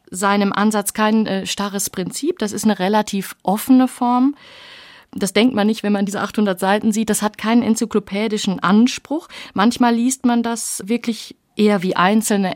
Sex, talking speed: female, 165 wpm